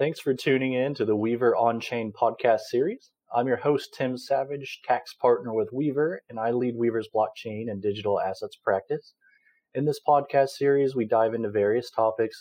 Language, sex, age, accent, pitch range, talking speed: English, male, 30-49, American, 105-140 Hz, 180 wpm